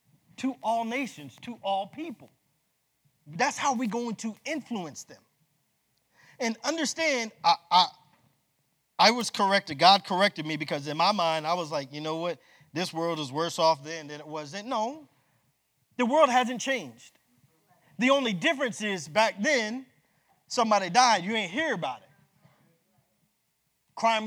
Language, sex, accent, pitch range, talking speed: English, male, American, 185-270 Hz, 155 wpm